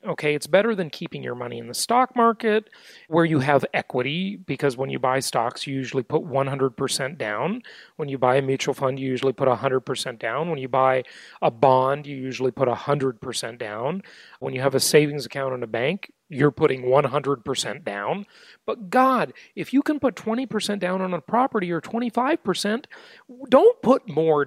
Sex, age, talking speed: male, 40-59, 185 wpm